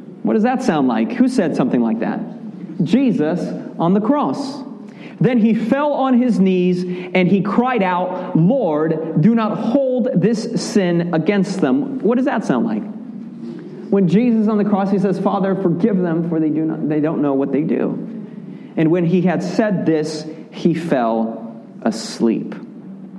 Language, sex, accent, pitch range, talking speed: English, male, American, 175-235 Hz, 175 wpm